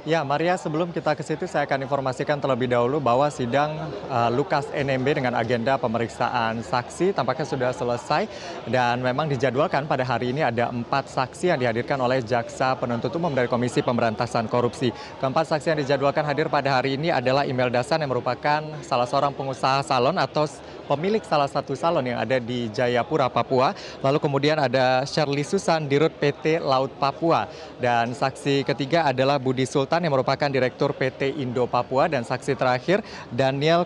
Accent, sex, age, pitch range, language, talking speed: native, male, 20-39, 125-155 Hz, Indonesian, 165 wpm